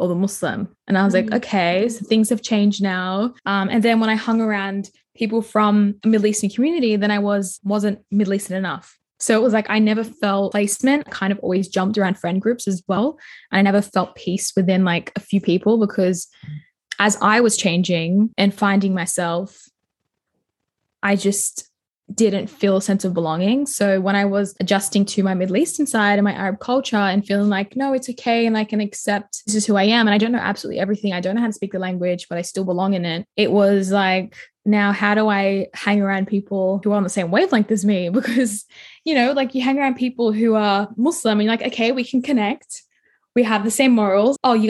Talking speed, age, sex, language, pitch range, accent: 225 wpm, 10-29, female, English, 195-225 Hz, Australian